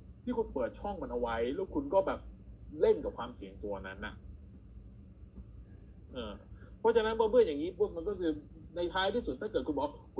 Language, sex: Thai, male